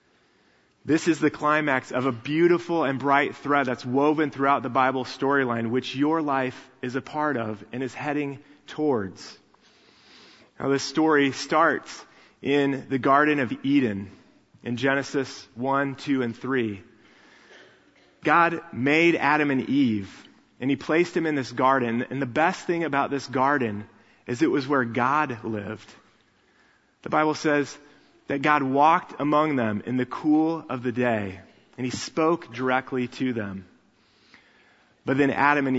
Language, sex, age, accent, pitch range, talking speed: English, male, 30-49, American, 120-145 Hz, 155 wpm